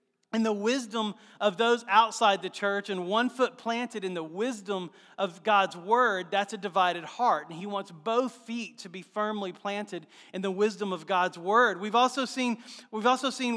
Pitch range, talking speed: 170-225 Hz, 190 wpm